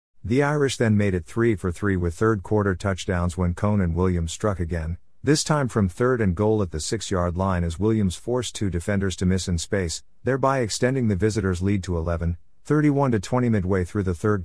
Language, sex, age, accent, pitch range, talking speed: English, male, 50-69, American, 90-110 Hz, 190 wpm